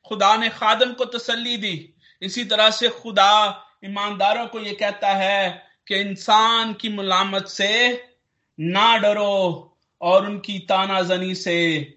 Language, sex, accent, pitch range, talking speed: Hindi, male, native, 185-225 Hz, 130 wpm